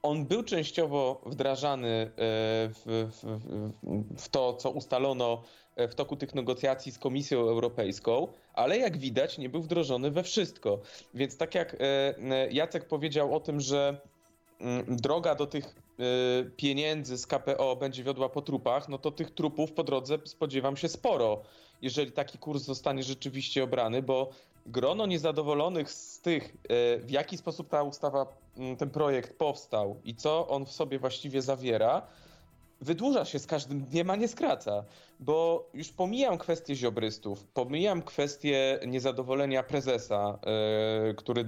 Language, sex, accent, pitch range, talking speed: Polish, male, native, 120-155 Hz, 135 wpm